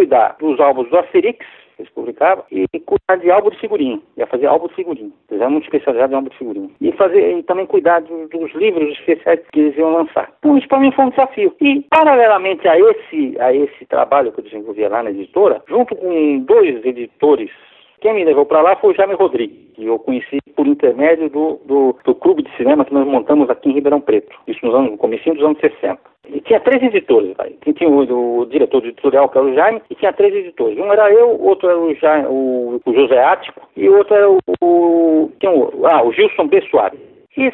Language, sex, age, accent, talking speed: Portuguese, male, 60-79, Brazilian, 230 wpm